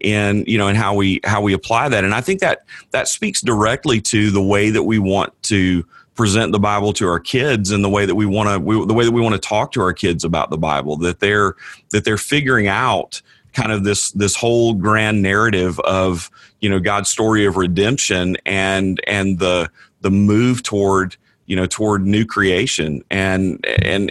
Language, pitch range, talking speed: English, 95-115 Hz, 210 wpm